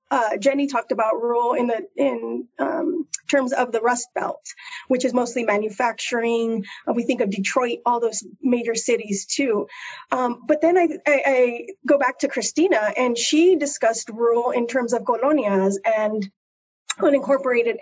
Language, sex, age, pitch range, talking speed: English, female, 30-49, 225-285 Hz, 160 wpm